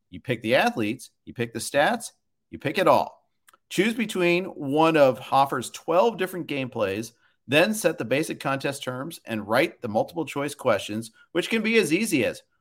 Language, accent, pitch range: English, American, 125-170 Hz